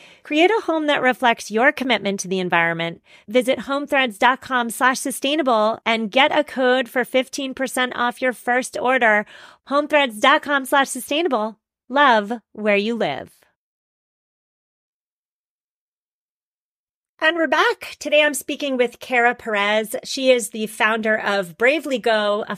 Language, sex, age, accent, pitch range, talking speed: English, female, 40-59, American, 200-265 Hz, 130 wpm